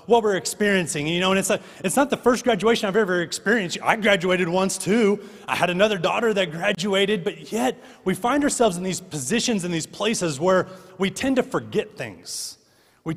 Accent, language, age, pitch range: American, English, 30-49, 150-200 Hz